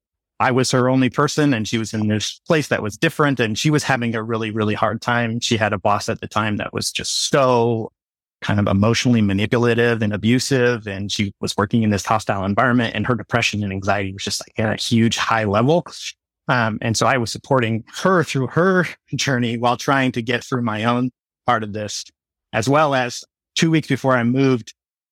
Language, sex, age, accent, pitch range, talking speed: English, male, 30-49, American, 110-125 Hz, 215 wpm